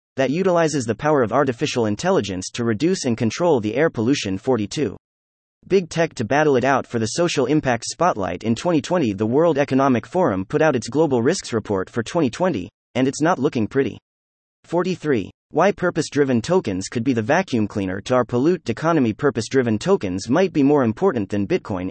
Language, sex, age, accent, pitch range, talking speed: English, male, 30-49, American, 110-155 Hz, 180 wpm